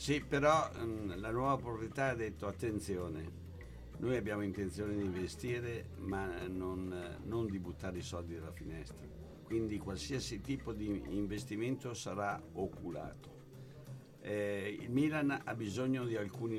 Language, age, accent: Italian, 60-79, native